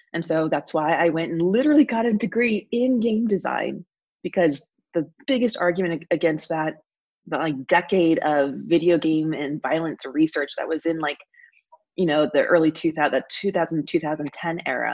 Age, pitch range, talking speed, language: 20-39, 160-205 Hz, 160 wpm, English